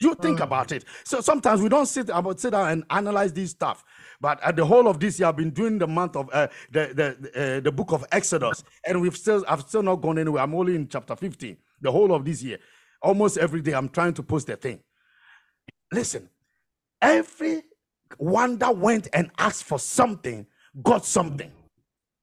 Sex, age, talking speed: male, 50-69, 200 wpm